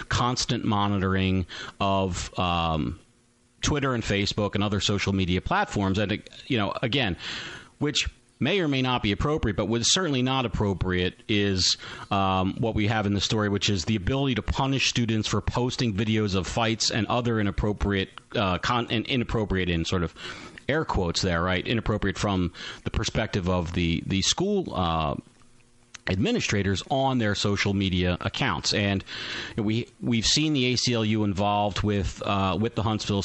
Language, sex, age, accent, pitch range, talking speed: English, male, 40-59, American, 95-120 Hz, 160 wpm